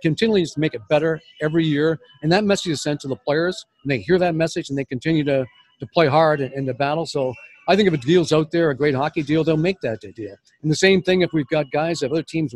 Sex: male